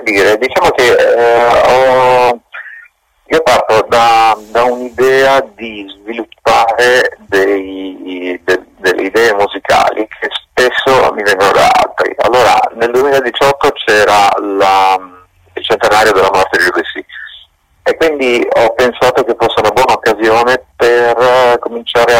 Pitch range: 100-125 Hz